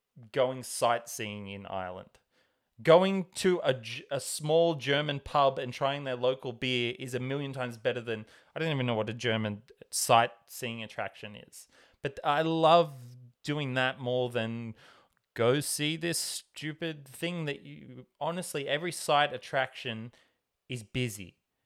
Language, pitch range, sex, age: English, 125-165 Hz, male, 20-39